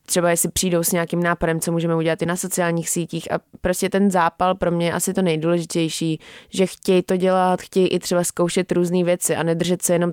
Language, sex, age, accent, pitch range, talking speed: Czech, female, 20-39, native, 165-180 Hz, 220 wpm